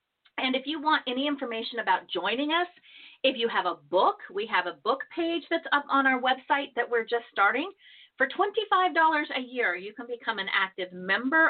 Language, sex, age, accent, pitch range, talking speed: English, female, 40-59, American, 215-320 Hz, 200 wpm